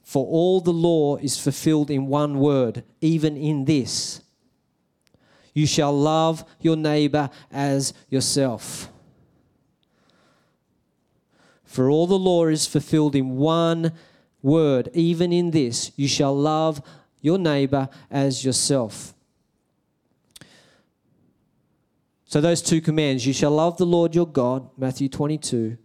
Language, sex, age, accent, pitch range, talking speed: English, male, 40-59, Australian, 135-160 Hz, 120 wpm